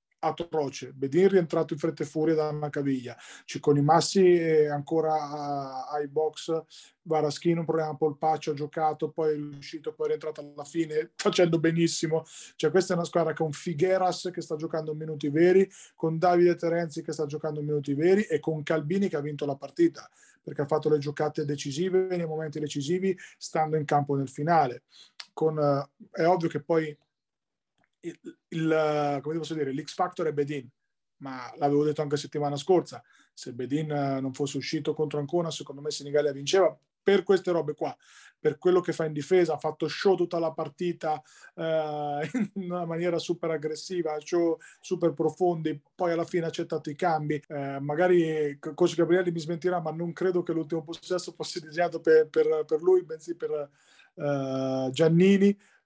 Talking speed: 170 wpm